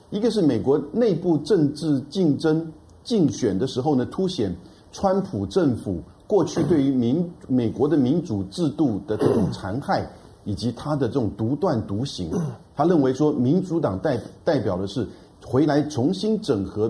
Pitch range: 105-155 Hz